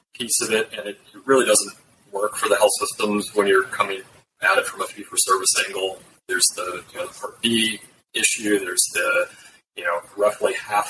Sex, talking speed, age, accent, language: male, 180 wpm, 30-49, American, English